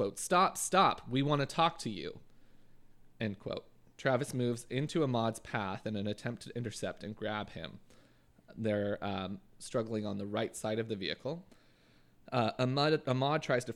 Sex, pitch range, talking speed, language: male, 105-125 Hz, 160 wpm, English